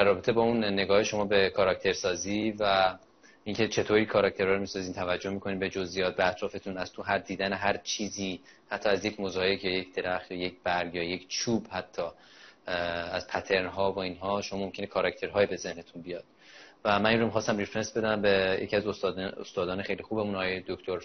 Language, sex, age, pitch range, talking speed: Persian, male, 20-39, 95-105 Hz, 175 wpm